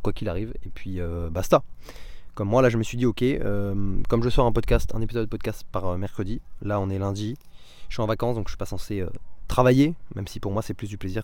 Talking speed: 270 wpm